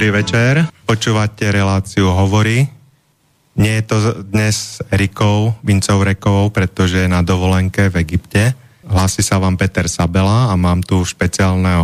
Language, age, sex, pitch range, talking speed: Slovak, 30-49, male, 90-105 Hz, 135 wpm